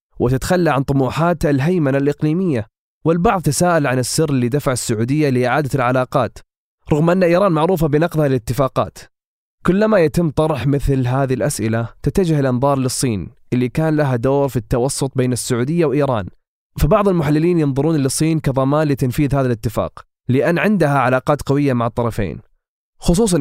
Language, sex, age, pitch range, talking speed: Arabic, male, 20-39, 120-150 Hz, 135 wpm